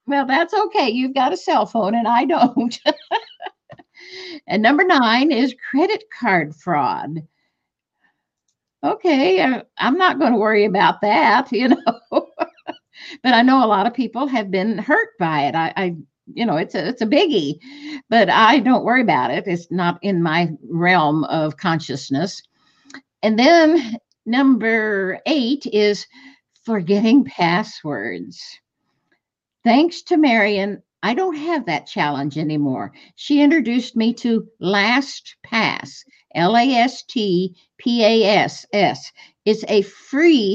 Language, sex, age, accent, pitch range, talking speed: English, female, 50-69, American, 195-275 Hz, 125 wpm